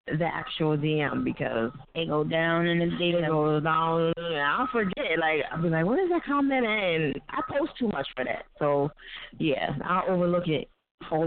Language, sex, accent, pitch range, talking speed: English, female, American, 170-245 Hz, 190 wpm